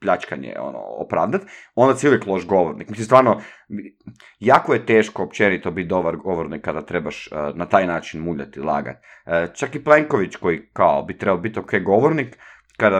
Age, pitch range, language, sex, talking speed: 30-49, 90-130 Hz, Croatian, male, 160 wpm